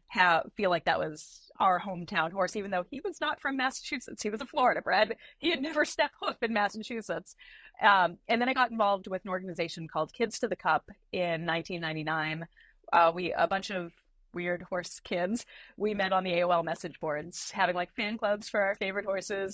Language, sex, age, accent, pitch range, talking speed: English, female, 30-49, American, 165-210 Hz, 200 wpm